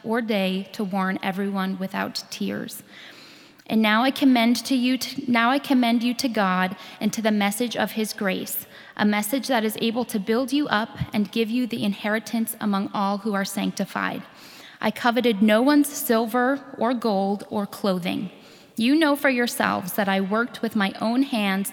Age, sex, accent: 10-29, female, American